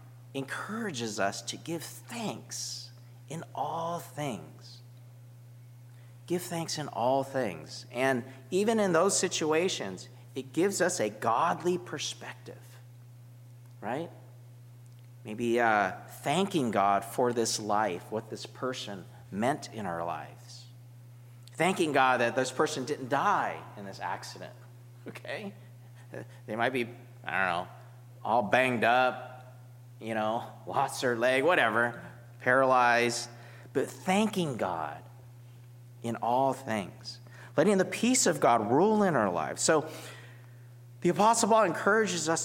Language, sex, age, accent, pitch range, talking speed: English, male, 40-59, American, 120-150 Hz, 125 wpm